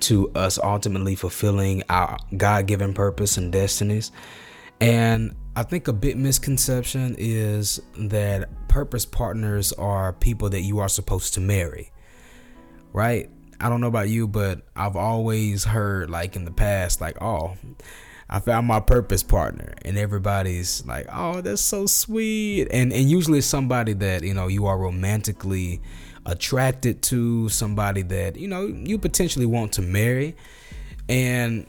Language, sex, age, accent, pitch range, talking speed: English, male, 20-39, American, 95-120 Hz, 145 wpm